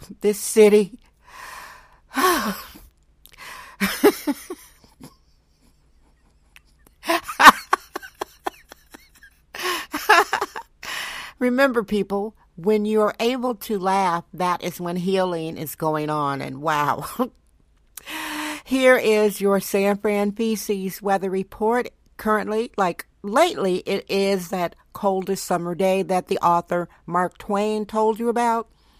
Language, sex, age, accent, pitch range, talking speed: English, female, 60-79, American, 175-220 Hz, 90 wpm